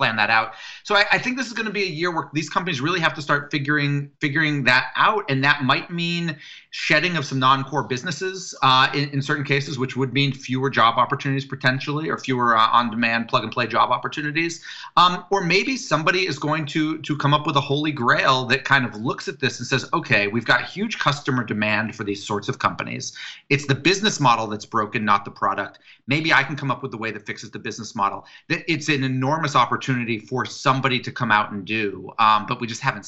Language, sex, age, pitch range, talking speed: English, male, 30-49, 115-150 Hz, 220 wpm